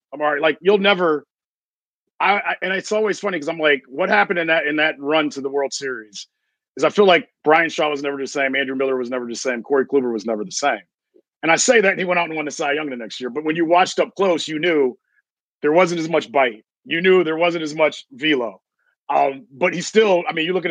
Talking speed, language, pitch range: 270 wpm, English, 140-180 Hz